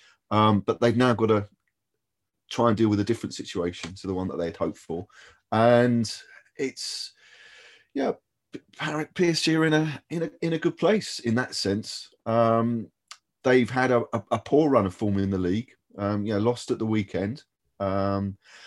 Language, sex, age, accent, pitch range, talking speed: English, male, 30-49, British, 100-120 Hz, 190 wpm